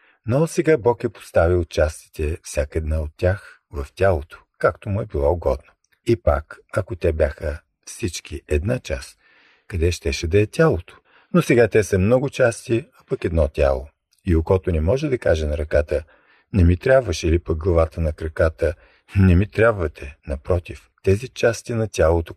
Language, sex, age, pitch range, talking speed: Bulgarian, male, 50-69, 80-115 Hz, 170 wpm